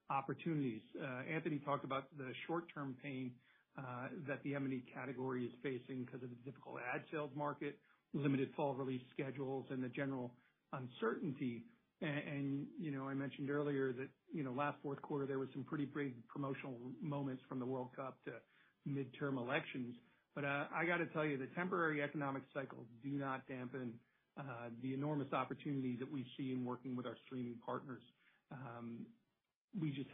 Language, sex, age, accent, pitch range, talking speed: English, male, 50-69, American, 130-150 Hz, 175 wpm